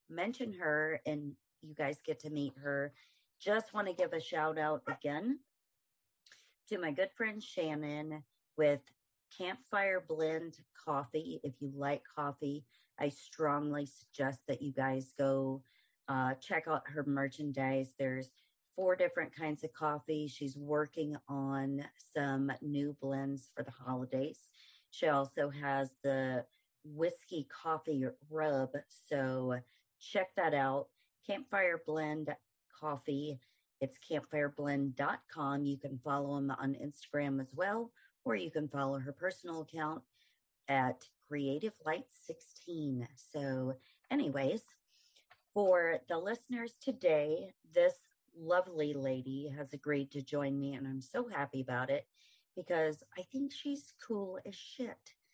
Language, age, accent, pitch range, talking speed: English, 40-59, American, 135-175 Hz, 130 wpm